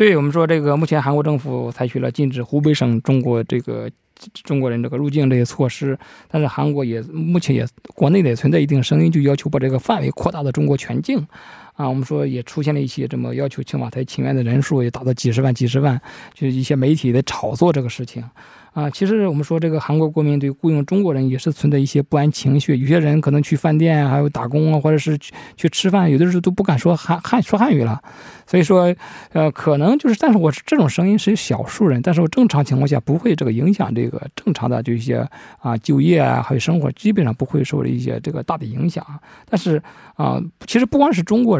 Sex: male